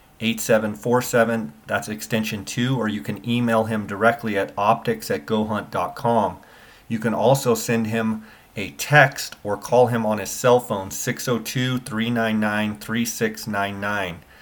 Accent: American